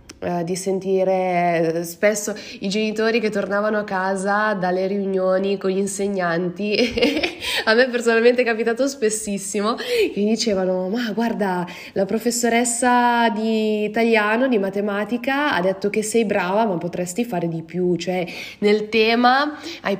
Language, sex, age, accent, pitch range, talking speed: Italian, female, 20-39, native, 175-215 Hz, 130 wpm